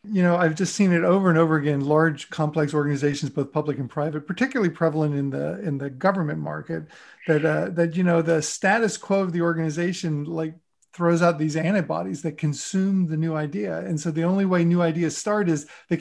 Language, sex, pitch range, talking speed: English, male, 155-180 Hz, 210 wpm